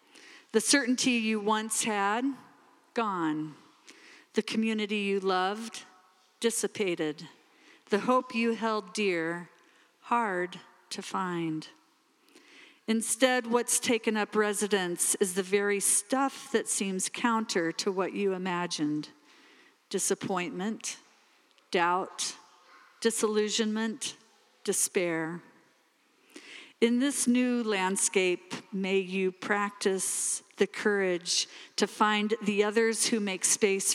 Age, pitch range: 50-69, 190-235 Hz